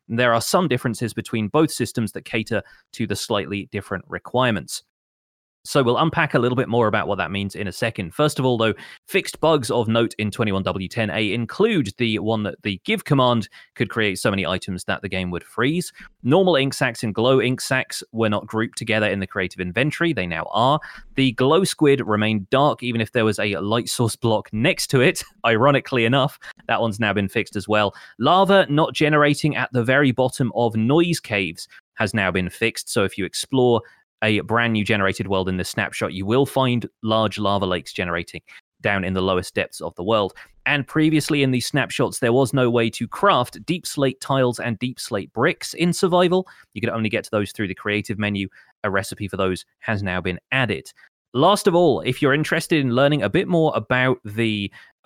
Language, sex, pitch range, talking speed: English, male, 100-130 Hz, 210 wpm